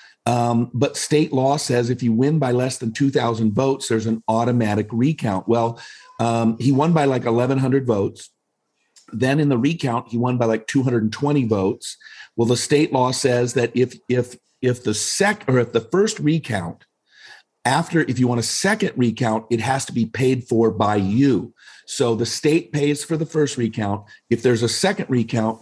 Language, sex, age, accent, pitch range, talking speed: English, male, 50-69, American, 115-145 Hz, 185 wpm